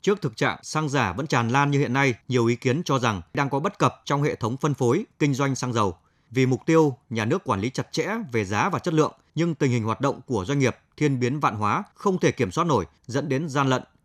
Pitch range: 120-155 Hz